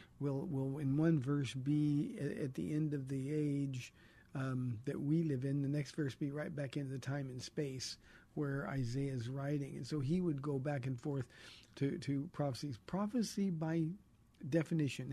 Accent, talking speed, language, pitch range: American, 185 wpm, English, 135-155 Hz